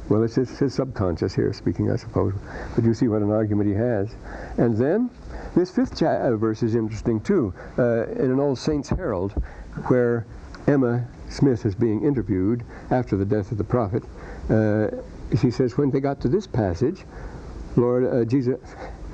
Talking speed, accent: 170 wpm, American